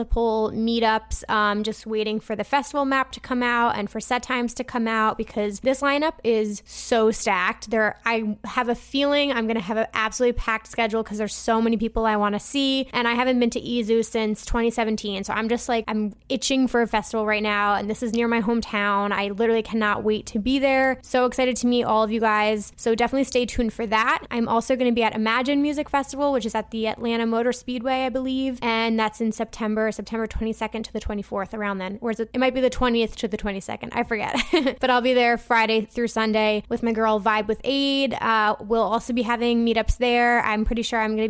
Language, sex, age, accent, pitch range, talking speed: English, female, 20-39, American, 215-245 Hz, 230 wpm